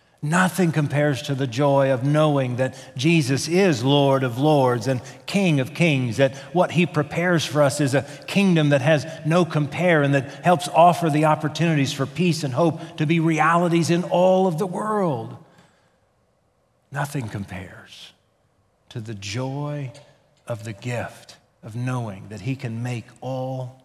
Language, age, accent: English, 40-59, American